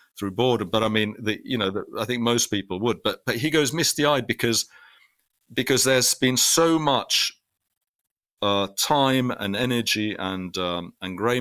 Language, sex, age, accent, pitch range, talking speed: English, male, 50-69, British, 100-125 Hz, 175 wpm